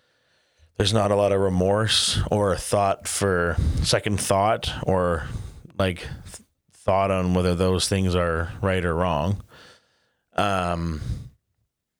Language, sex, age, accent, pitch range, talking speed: English, male, 30-49, American, 90-105 Hz, 115 wpm